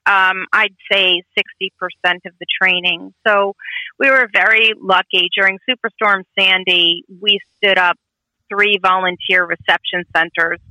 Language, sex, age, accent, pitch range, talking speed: English, female, 40-59, American, 180-210 Hz, 125 wpm